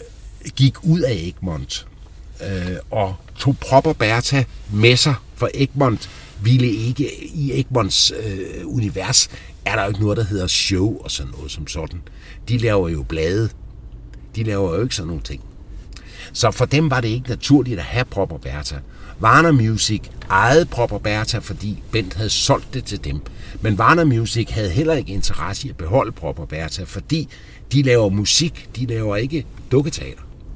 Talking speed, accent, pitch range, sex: 170 wpm, native, 95-130 Hz, male